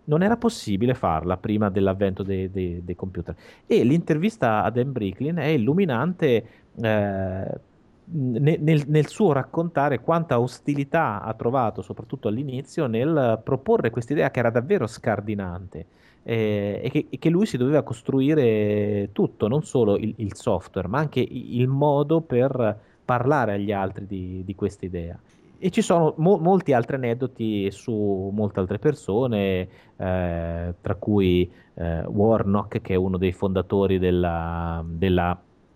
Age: 30-49